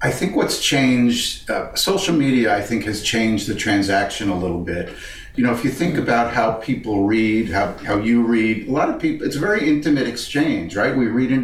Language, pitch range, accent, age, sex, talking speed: English, 100-130 Hz, American, 50-69, male, 220 wpm